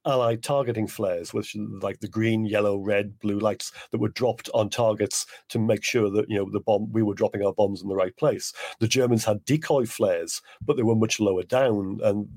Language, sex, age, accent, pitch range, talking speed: English, male, 40-59, British, 105-140 Hz, 220 wpm